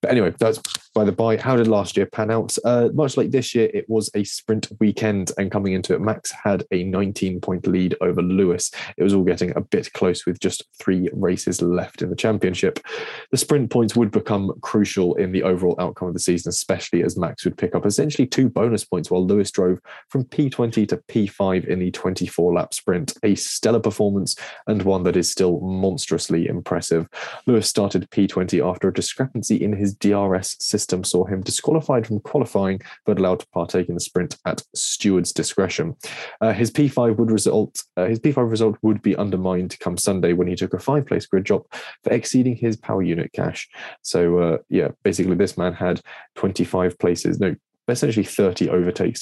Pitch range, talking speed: 90-110 Hz, 195 wpm